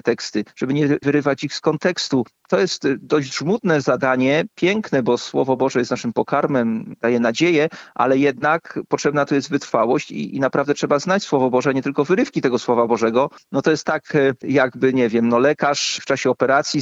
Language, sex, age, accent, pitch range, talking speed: Polish, male, 40-59, native, 125-155 Hz, 185 wpm